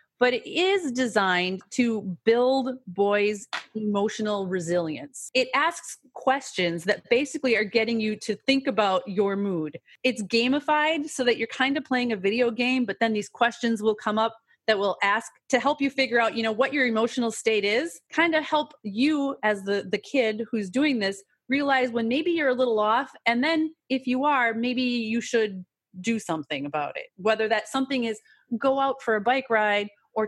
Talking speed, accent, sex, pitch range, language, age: 190 wpm, American, female, 195-255 Hz, English, 30-49